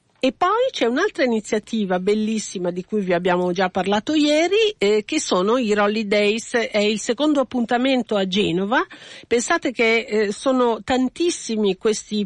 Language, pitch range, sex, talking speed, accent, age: Italian, 195-260 Hz, female, 150 wpm, native, 50-69